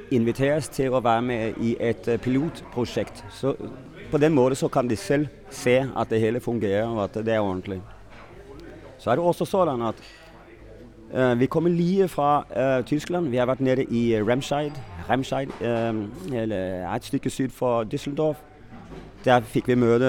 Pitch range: 110-135 Hz